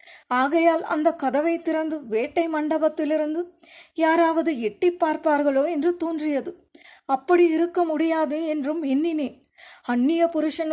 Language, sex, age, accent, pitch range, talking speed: Tamil, female, 20-39, native, 290-330 Hz, 100 wpm